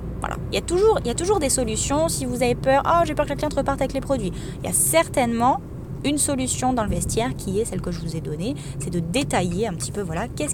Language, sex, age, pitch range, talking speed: French, female, 20-39, 180-260 Hz, 285 wpm